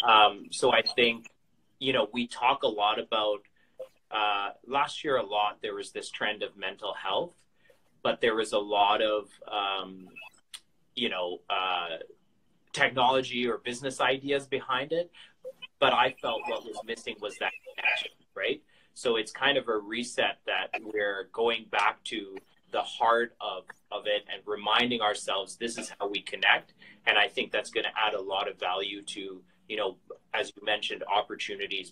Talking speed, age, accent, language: 170 wpm, 30-49, American, English